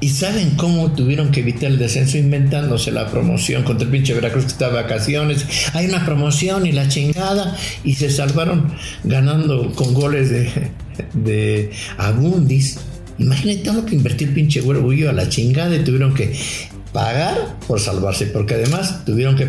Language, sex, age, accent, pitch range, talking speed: English, male, 60-79, Mexican, 110-150 Hz, 165 wpm